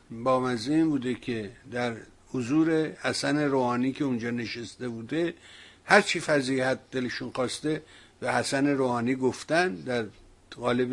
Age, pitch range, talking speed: 60-79, 120-145 Hz, 120 wpm